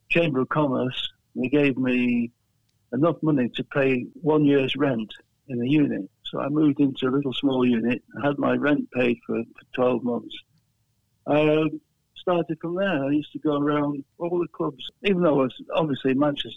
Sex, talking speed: male, 190 wpm